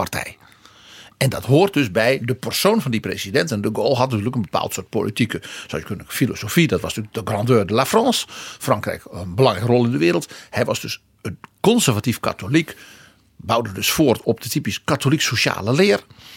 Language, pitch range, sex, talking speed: Dutch, 110-145 Hz, male, 185 wpm